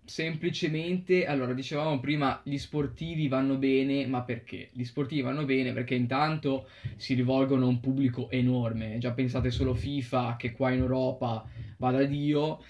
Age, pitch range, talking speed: 20-39, 125-145 Hz, 155 wpm